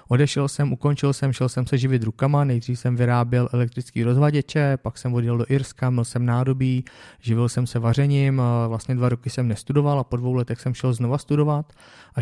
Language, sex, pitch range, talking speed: Czech, male, 120-140 Hz, 195 wpm